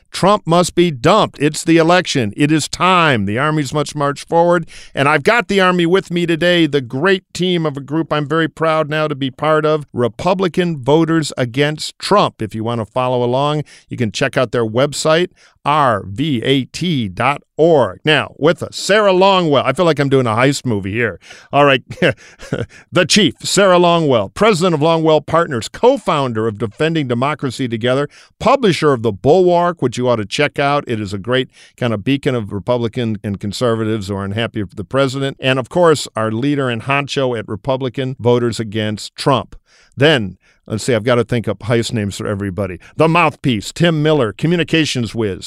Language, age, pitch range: English, 50-69, 115-155 Hz